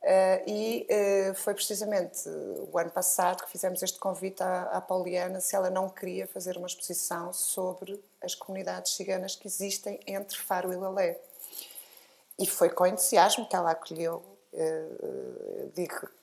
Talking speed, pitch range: 155 wpm, 180-210 Hz